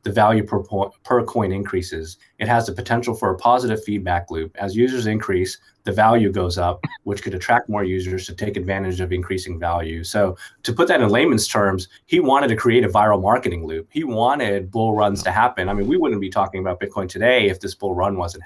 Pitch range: 95-115 Hz